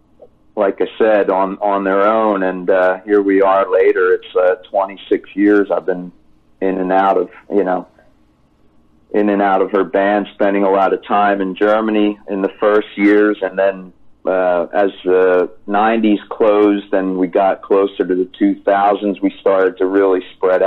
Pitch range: 95-105 Hz